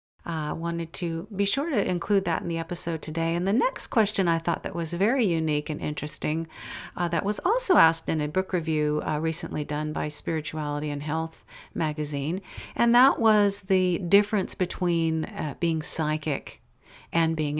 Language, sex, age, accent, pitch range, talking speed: English, female, 50-69, American, 150-190 Hz, 175 wpm